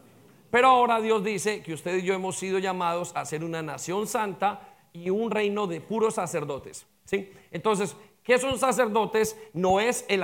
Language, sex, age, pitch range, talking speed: English, male, 40-59, 180-220 Hz, 175 wpm